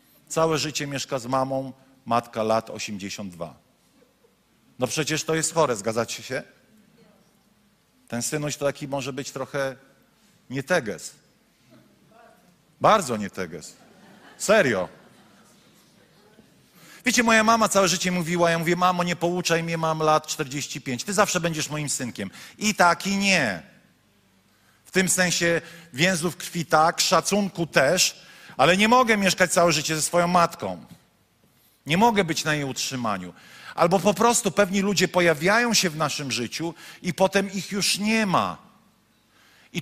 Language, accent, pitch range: Polish, native, 145-195 Hz